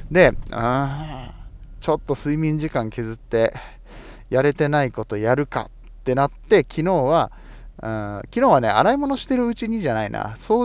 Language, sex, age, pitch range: Japanese, male, 20-39, 115-160 Hz